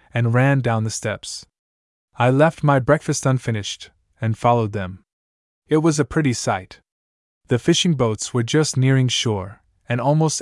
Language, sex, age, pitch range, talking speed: English, male, 20-39, 110-140 Hz, 155 wpm